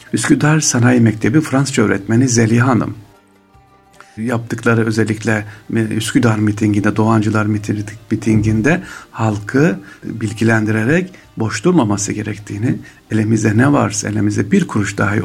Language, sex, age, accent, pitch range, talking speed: Turkish, male, 60-79, native, 105-120 Hz, 100 wpm